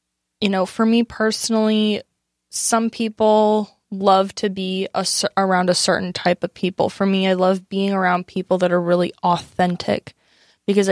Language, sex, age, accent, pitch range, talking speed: English, female, 20-39, American, 175-210 Hz, 155 wpm